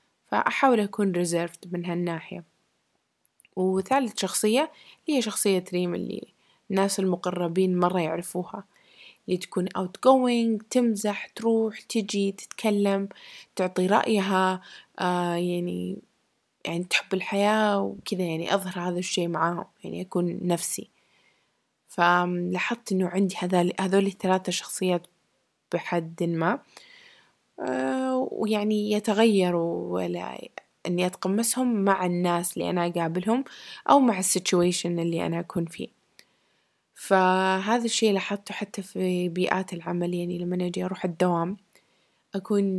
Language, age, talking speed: Arabic, 20-39, 110 wpm